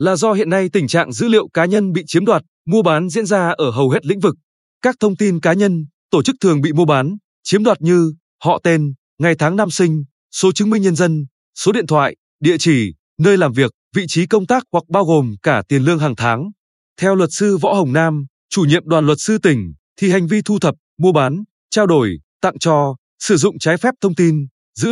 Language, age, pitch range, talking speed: Vietnamese, 20-39, 150-200 Hz, 235 wpm